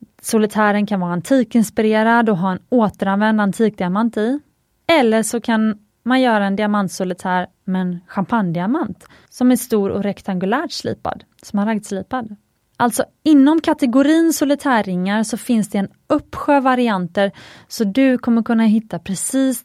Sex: female